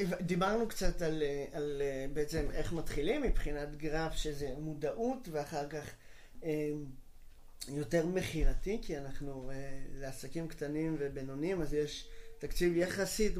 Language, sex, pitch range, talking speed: Hebrew, male, 145-185 Hz, 110 wpm